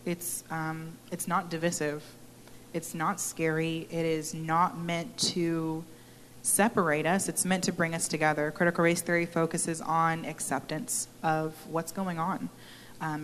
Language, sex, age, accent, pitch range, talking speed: English, female, 20-39, American, 155-175 Hz, 145 wpm